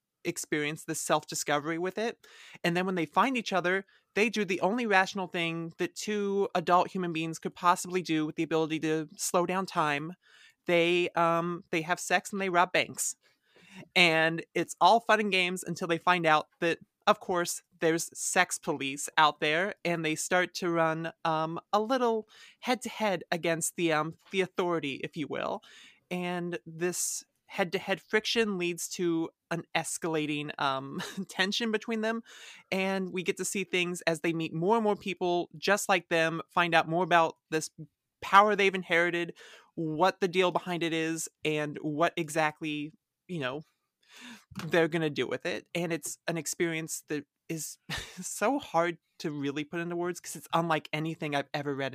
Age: 30-49